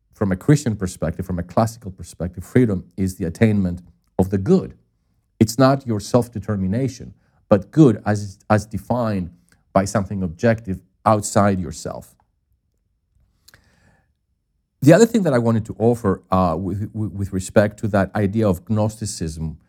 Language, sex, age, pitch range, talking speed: English, male, 50-69, 95-115 Hz, 140 wpm